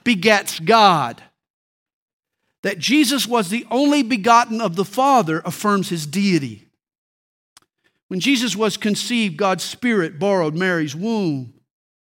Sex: male